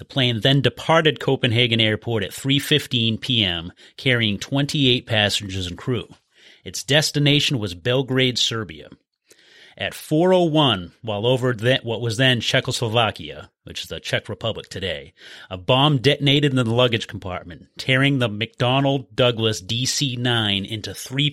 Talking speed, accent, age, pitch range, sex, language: 130 wpm, American, 30-49, 110-140 Hz, male, English